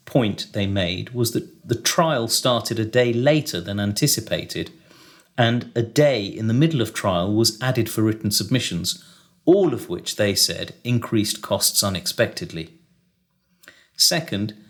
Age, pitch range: 40-59, 110-140 Hz